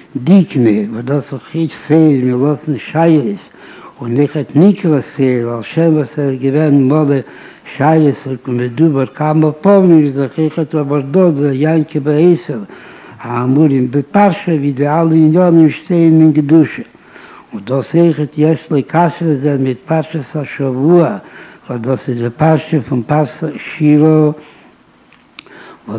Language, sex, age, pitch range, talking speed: Hebrew, male, 60-79, 135-160 Hz, 105 wpm